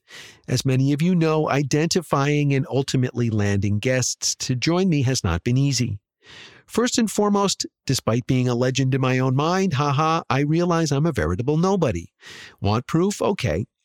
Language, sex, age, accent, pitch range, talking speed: English, male, 50-69, American, 110-160 Hz, 165 wpm